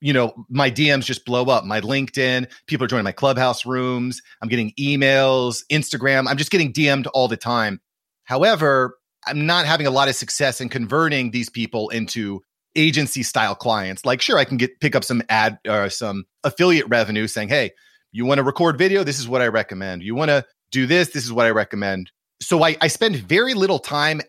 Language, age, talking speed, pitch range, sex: English, 30-49, 210 wpm, 115-145 Hz, male